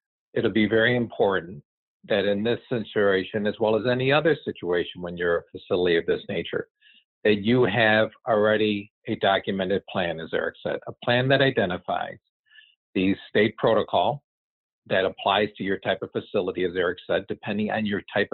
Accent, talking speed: American, 170 wpm